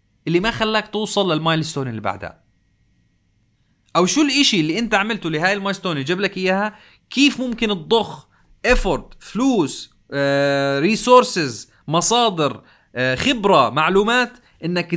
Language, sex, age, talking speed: Arabic, male, 30-49, 115 wpm